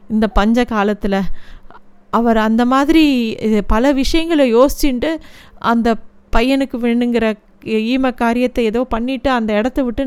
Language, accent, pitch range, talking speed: Tamil, native, 225-270 Hz, 105 wpm